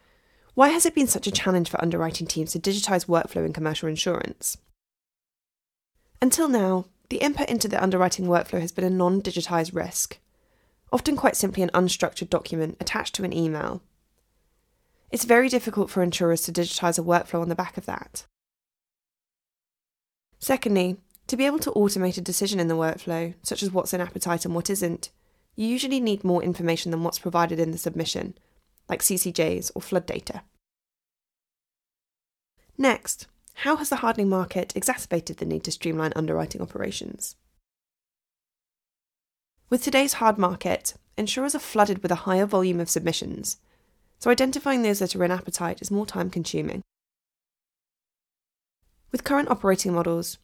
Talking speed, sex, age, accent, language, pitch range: 150 wpm, female, 10-29, British, English, 170-225 Hz